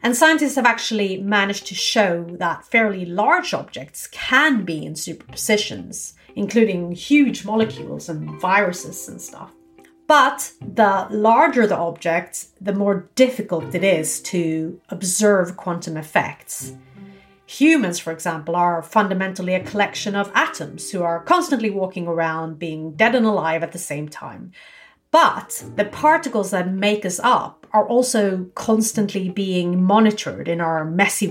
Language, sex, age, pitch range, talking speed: English, female, 30-49, 170-230 Hz, 140 wpm